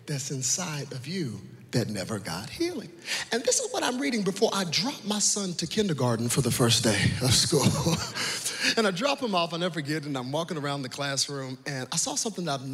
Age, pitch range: 40-59, 140-205 Hz